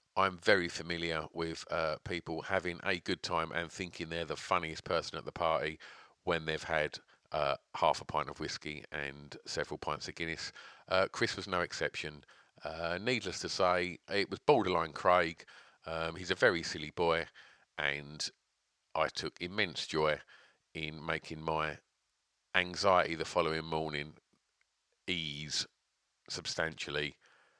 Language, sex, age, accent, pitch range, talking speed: English, male, 40-59, British, 80-95 Hz, 145 wpm